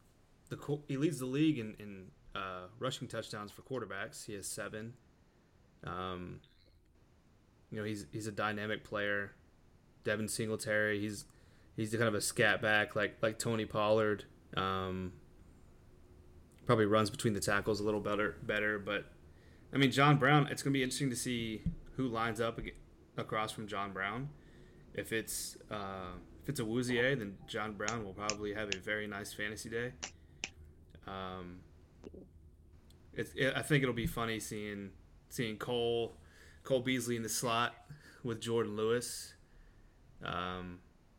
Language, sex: English, male